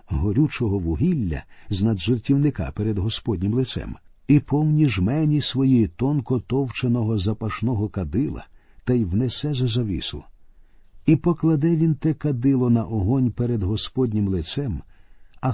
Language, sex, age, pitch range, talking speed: Ukrainian, male, 50-69, 100-135 Hz, 115 wpm